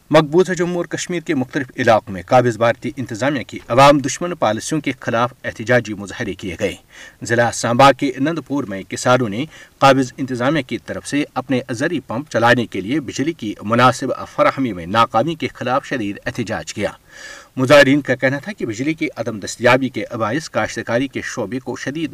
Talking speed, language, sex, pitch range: 180 wpm, Urdu, male, 115-140 Hz